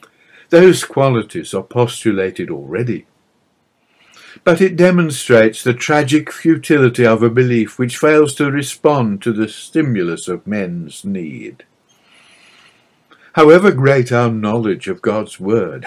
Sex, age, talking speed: male, 60-79, 115 wpm